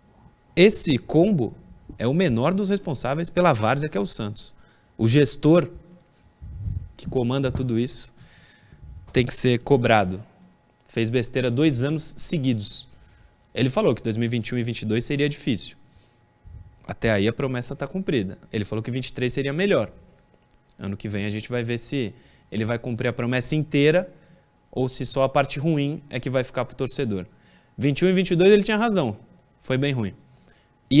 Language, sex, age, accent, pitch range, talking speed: Portuguese, male, 20-39, Brazilian, 120-165 Hz, 165 wpm